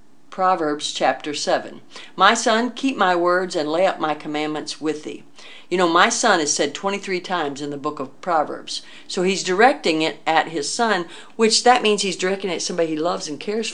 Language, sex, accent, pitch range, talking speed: English, female, American, 155-215 Hz, 205 wpm